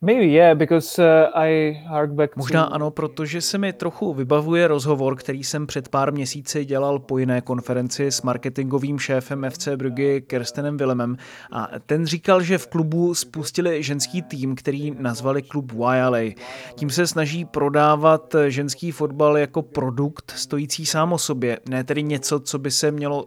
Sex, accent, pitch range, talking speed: male, native, 135-160 Hz, 145 wpm